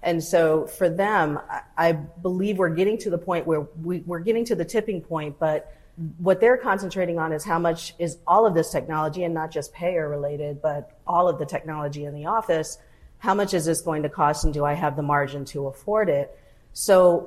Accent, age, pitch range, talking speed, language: American, 40-59, 155-185 Hz, 210 wpm, English